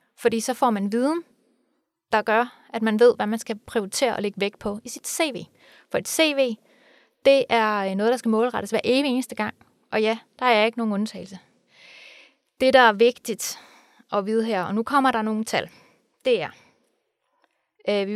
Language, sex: Danish, female